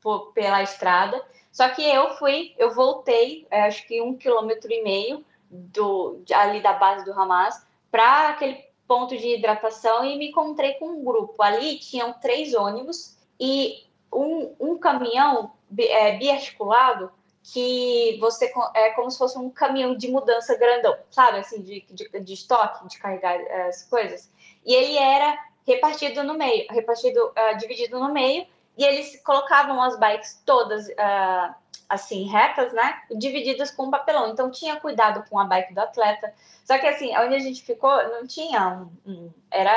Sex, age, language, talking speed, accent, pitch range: female, 10-29, Portuguese, 165 wpm, Brazilian, 205-270 Hz